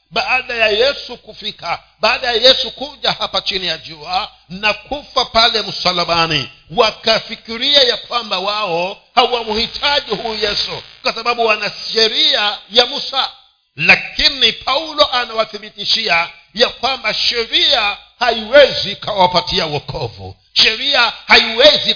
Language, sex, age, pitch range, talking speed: Swahili, male, 50-69, 175-240 Hz, 110 wpm